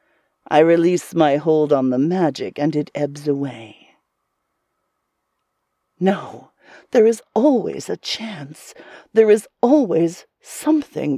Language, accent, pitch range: English, American, 155-230 Hz